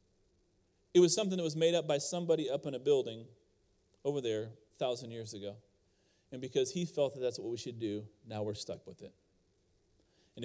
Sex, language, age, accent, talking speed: male, English, 30-49, American, 200 wpm